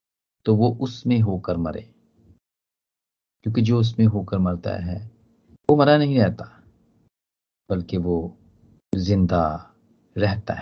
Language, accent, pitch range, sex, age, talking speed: Hindi, native, 100-160 Hz, male, 40-59, 105 wpm